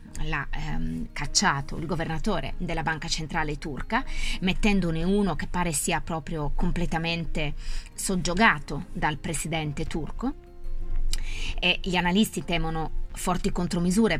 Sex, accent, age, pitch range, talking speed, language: female, native, 20-39, 155-195 Hz, 110 wpm, Italian